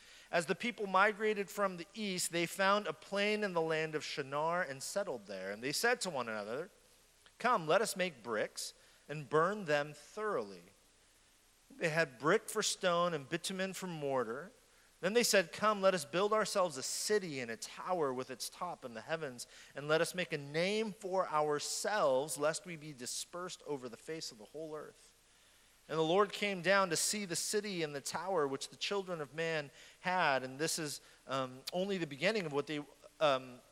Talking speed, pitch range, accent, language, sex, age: 195 wpm, 145-195 Hz, American, English, male, 40-59